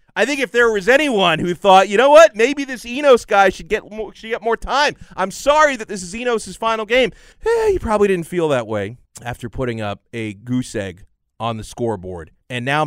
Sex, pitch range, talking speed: male, 110-180 Hz, 225 wpm